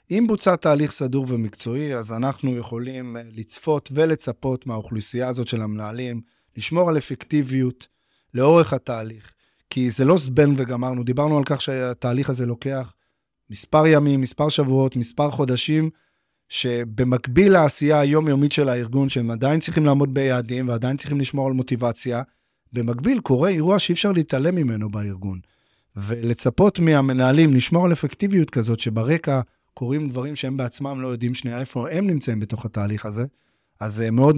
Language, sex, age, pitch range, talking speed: Hebrew, male, 30-49, 120-150 Hz, 140 wpm